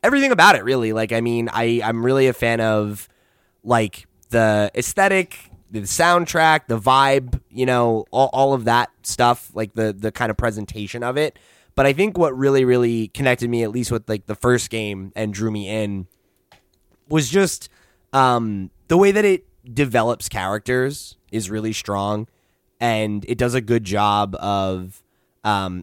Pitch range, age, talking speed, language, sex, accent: 100-120 Hz, 20-39, 170 wpm, English, male, American